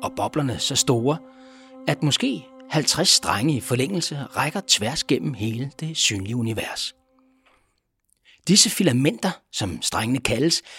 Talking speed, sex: 120 wpm, male